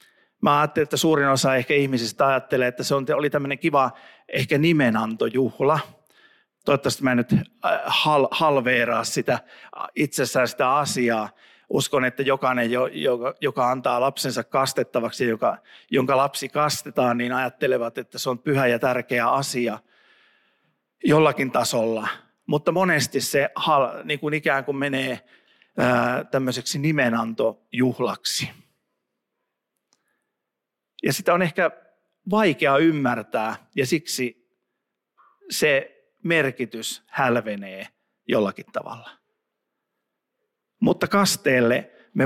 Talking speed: 100 wpm